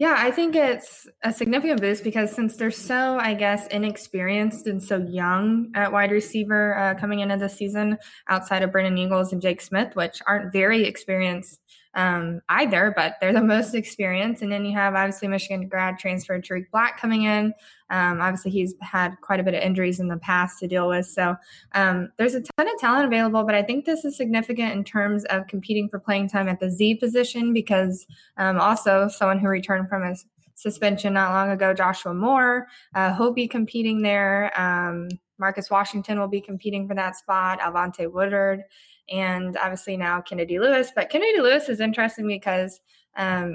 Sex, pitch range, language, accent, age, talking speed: female, 185-220 Hz, English, American, 10-29, 190 wpm